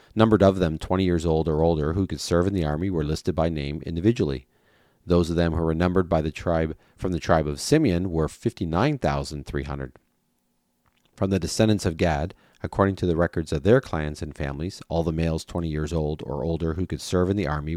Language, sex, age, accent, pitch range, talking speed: English, male, 40-59, American, 75-95 Hz, 215 wpm